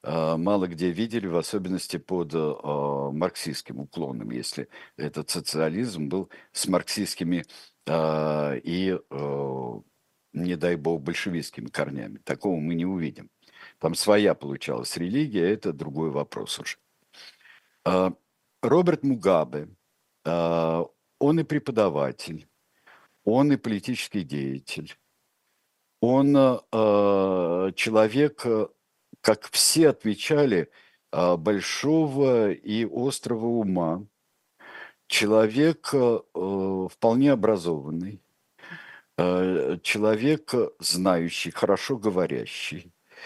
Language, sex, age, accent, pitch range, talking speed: Russian, male, 60-79, native, 80-115 Hz, 80 wpm